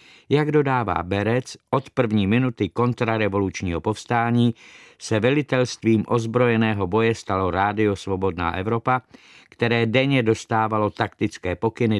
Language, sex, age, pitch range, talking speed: Czech, male, 50-69, 105-130 Hz, 105 wpm